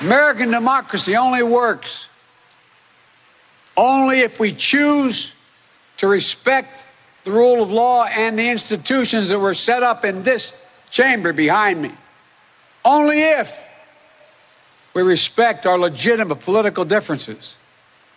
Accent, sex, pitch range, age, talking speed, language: American, male, 205-255 Hz, 60-79, 110 wpm, English